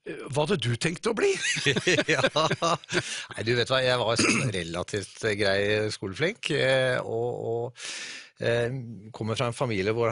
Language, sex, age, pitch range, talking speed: English, male, 30-49, 100-125 Hz, 130 wpm